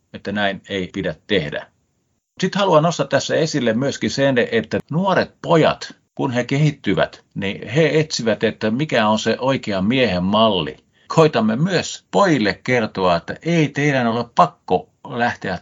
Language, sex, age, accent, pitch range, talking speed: Finnish, male, 50-69, native, 90-120 Hz, 145 wpm